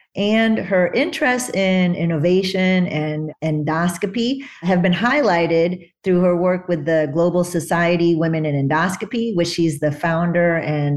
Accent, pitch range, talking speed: American, 165-190 Hz, 135 wpm